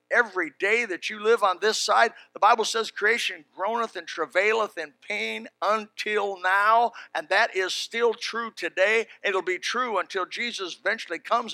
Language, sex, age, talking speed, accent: English, male, 60-79, 165 wpm, American